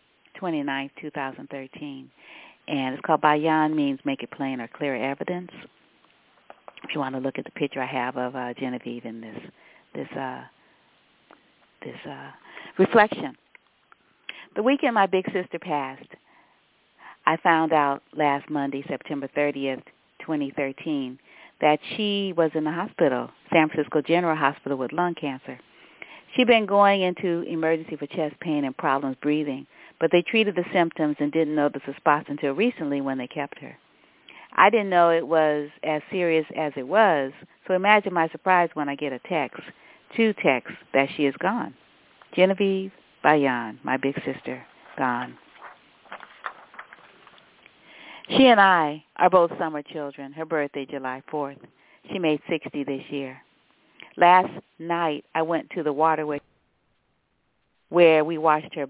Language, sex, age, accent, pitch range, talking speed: English, female, 40-59, American, 140-175 Hz, 150 wpm